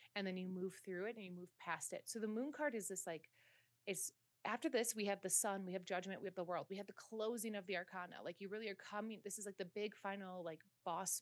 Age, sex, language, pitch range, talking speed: 30-49, female, English, 175-215 Hz, 280 wpm